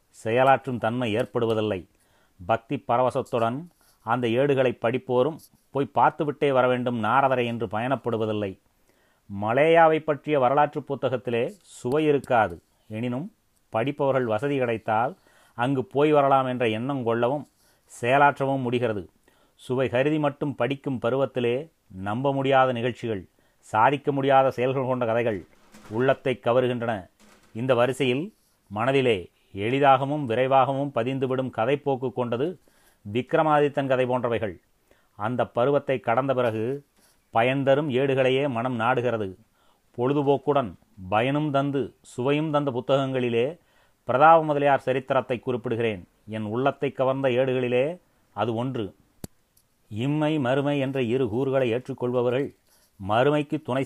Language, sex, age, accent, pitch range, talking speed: Tamil, male, 30-49, native, 115-140 Hz, 100 wpm